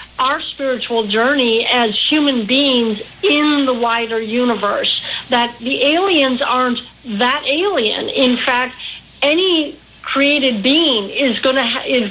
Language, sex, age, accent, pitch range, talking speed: English, female, 50-69, American, 220-260 Hz, 125 wpm